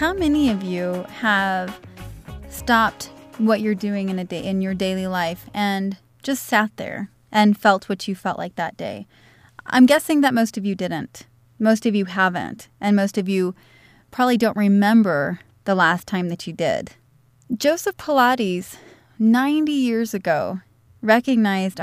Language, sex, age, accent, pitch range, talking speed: English, female, 30-49, American, 180-235 Hz, 160 wpm